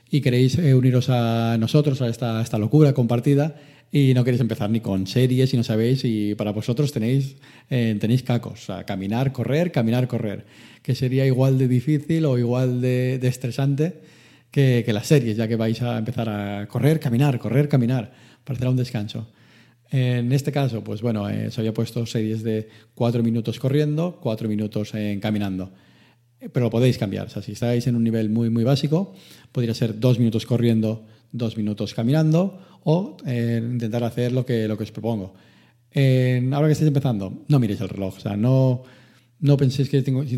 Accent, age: Spanish, 40-59